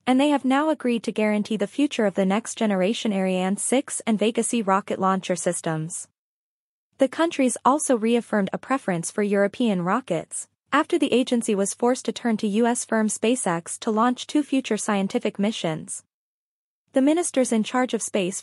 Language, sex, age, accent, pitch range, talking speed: English, female, 20-39, American, 195-250 Hz, 165 wpm